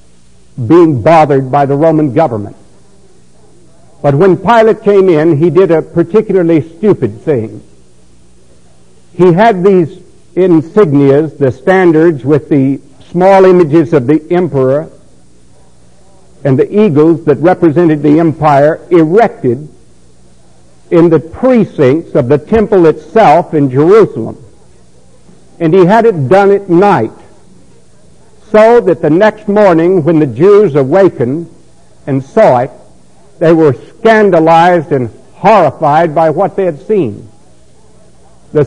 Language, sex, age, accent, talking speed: English, male, 60-79, American, 120 wpm